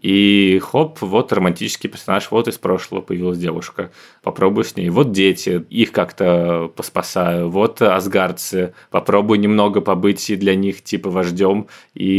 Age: 20-39